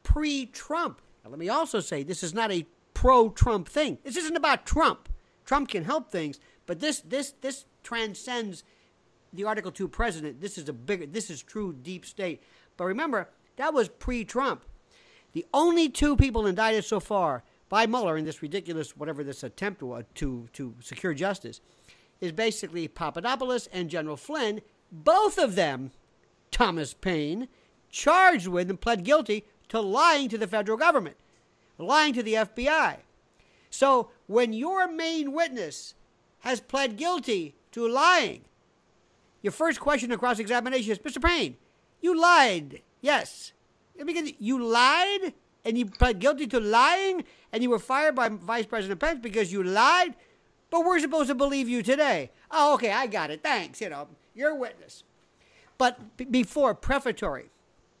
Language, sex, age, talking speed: English, male, 50-69, 155 wpm